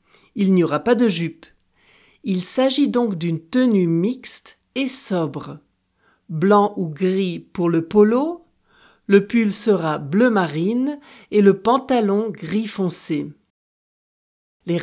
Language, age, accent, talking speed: French, 60-79, French, 125 wpm